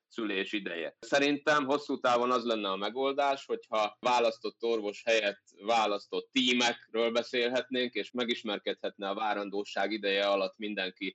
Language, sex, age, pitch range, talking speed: Hungarian, male, 20-39, 100-125 Hz, 125 wpm